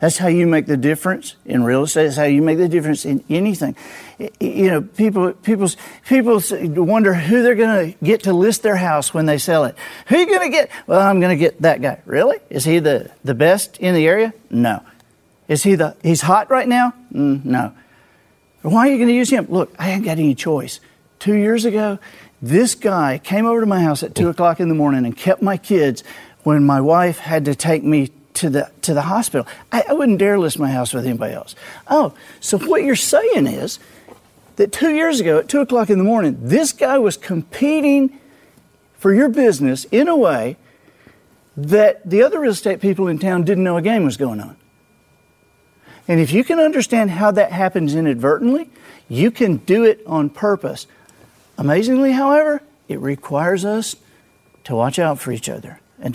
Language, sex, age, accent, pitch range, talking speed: English, male, 50-69, American, 155-225 Hz, 205 wpm